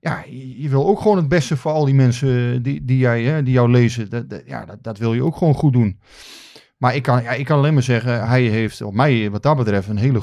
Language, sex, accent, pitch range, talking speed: Dutch, male, Dutch, 110-140 Hz, 275 wpm